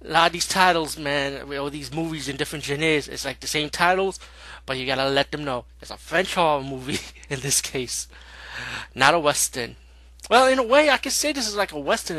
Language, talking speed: English, 230 wpm